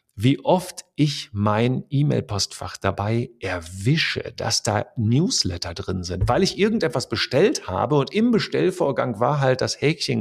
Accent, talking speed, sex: German, 140 wpm, male